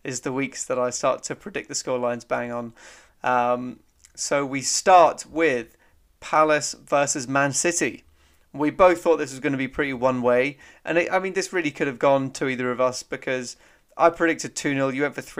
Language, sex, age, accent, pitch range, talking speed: English, male, 30-49, British, 125-155 Hz, 205 wpm